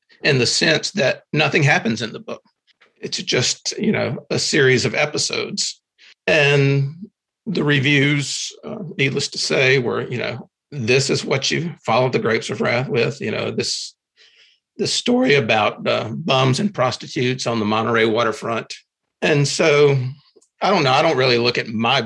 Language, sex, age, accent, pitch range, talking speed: English, male, 50-69, American, 115-145 Hz, 170 wpm